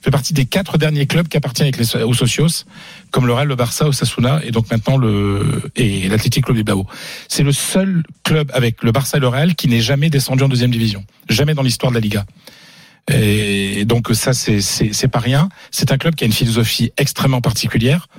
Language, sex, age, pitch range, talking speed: French, male, 40-59, 115-150 Hz, 215 wpm